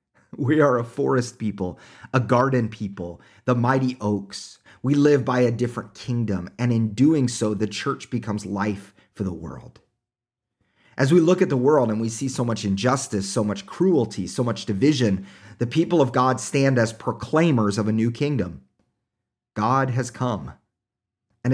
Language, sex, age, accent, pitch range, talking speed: English, male, 30-49, American, 100-130 Hz, 170 wpm